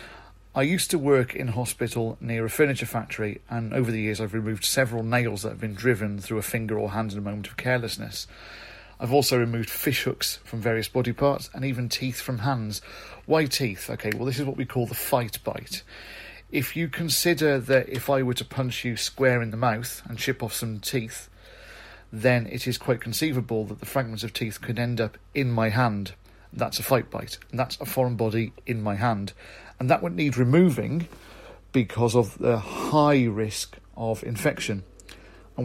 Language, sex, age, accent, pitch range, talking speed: English, male, 40-59, British, 110-130 Hz, 200 wpm